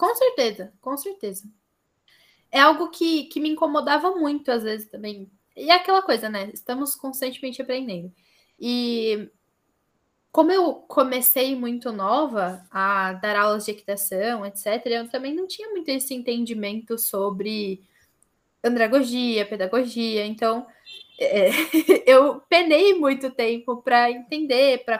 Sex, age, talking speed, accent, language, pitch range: female, 10-29, 125 wpm, Brazilian, Portuguese, 215-295 Hz